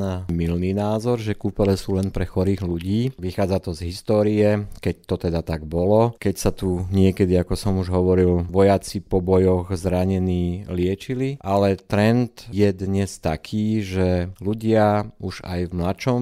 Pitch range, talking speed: 90-105 Hz, 155 wpm